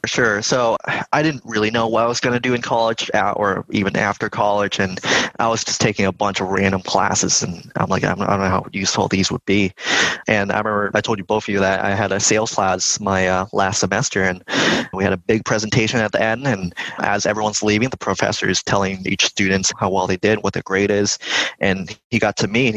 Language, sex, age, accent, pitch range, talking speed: English, male, 20-39, American, 95-110 Hz, 240 wpm